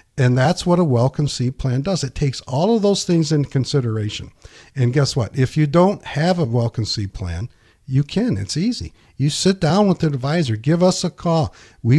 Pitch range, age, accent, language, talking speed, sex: 115-160 Hz, 50-69, American, English, 200 wpm, male